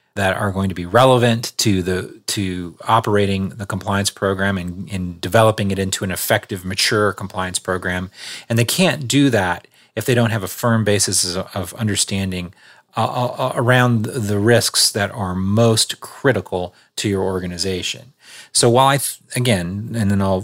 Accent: American